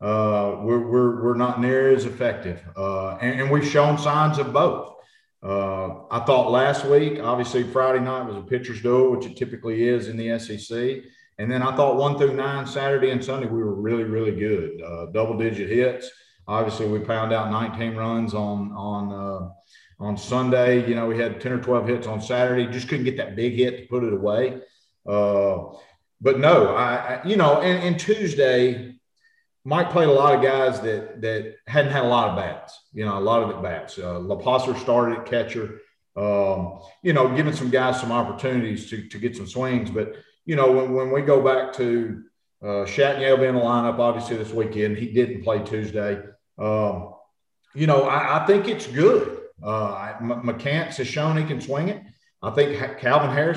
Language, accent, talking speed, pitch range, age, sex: English, American, 195 wpm, 110-140 Hz, 50-69, male